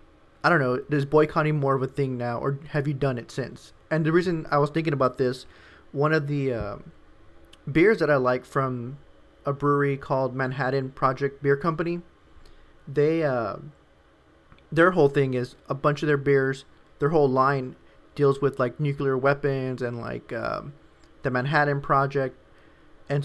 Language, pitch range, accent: English, 125-145 Hz, American